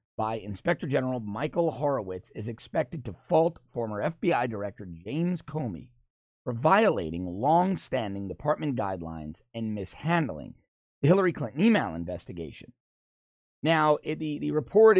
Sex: male